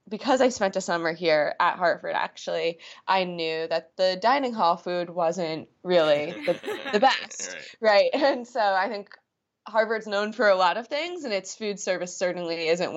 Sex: female